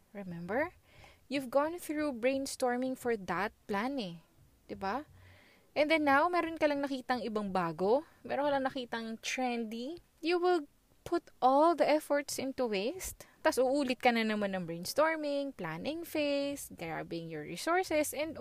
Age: 20-39